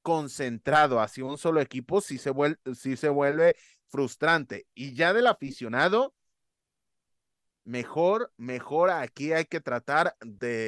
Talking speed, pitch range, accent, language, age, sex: 130 wpm, 135-185 Hz, Mexican, Spanish, 30-49, male